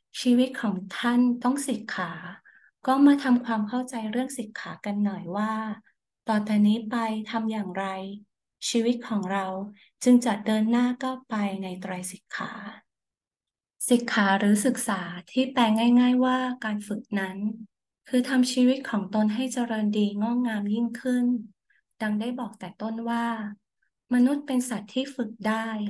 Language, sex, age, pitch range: Thai, female, 20-39, 210-245 Hz